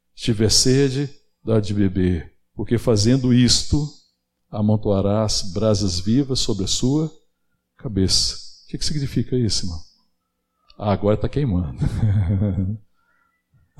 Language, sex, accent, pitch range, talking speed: Portuguese, male, Brazilian, 85-105 Hz, 105 wpm